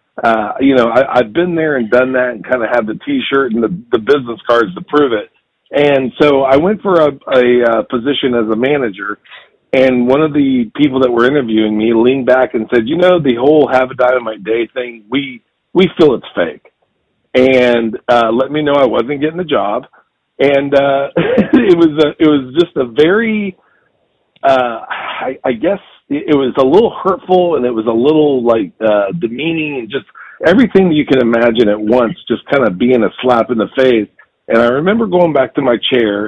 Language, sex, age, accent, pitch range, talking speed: English, male, 40-59, American, 115-140 Hz, 210 wpm